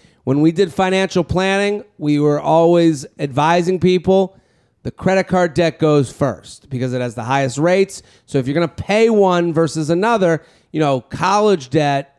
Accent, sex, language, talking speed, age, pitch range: American, male, English, 170 wpm, 40-59, 140-180 Hz